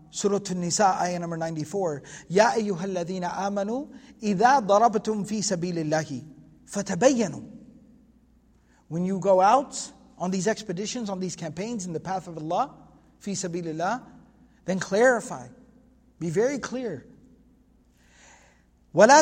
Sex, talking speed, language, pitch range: male, 120 wpm, English, 185-255 Hz